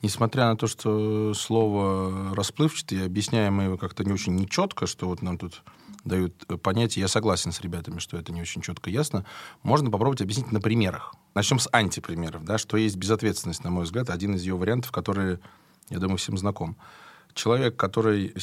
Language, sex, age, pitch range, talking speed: Russian, male, 20-39, 95-145 Hz, 175 wpm